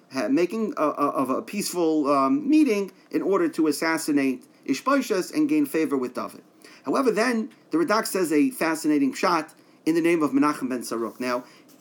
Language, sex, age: English, male, 40-59